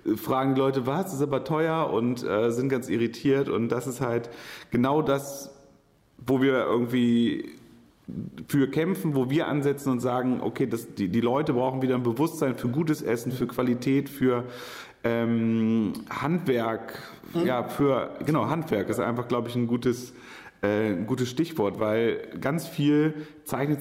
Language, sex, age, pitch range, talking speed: German, male, 30-49, 115-135 Hz, 160 wpm